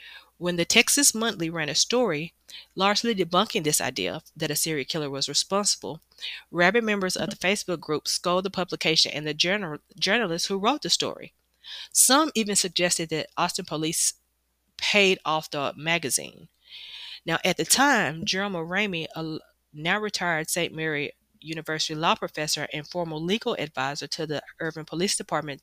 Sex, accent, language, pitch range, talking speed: female, American, English, 155-195 Hz, 155 wpm